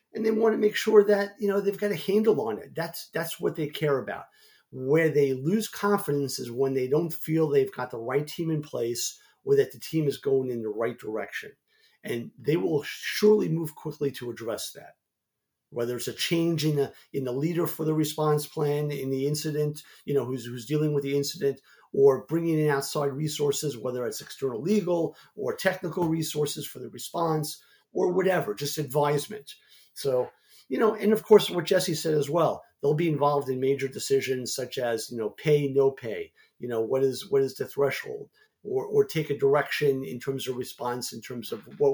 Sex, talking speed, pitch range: male, 205 wpm, 135-190 Hz